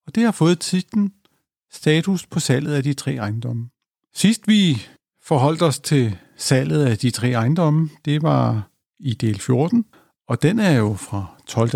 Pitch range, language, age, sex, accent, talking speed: 120-165 Hz, Danish, 50-69, male, native, 170 wpm